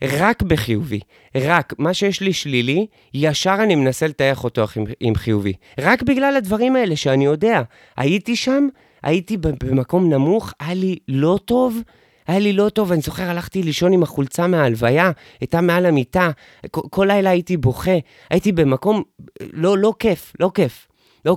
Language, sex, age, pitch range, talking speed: Hebrew, male, 30-49, 130-185 Hz, 155 wpm